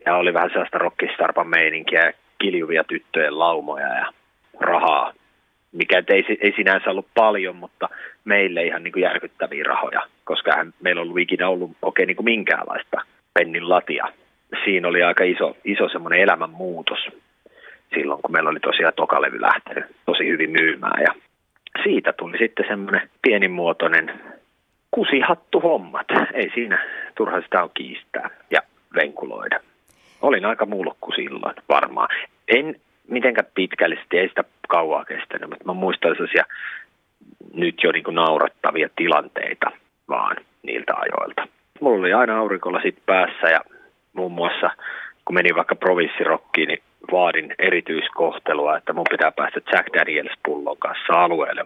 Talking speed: 135 wpm